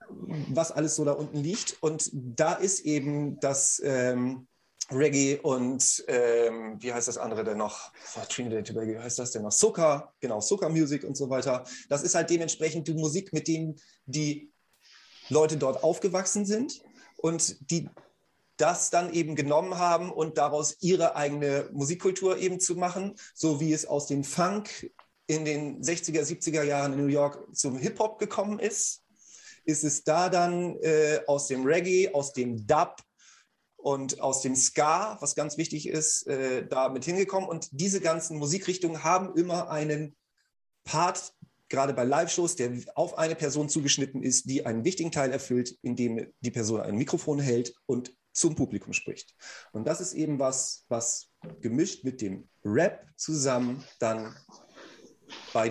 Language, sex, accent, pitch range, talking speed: German, male, German, 130-170 Hz, 160 wpm